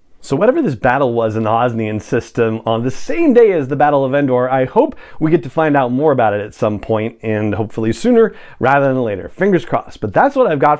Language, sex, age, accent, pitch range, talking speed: English, male, 40-59, American, 110-145 Hz, 245 wpm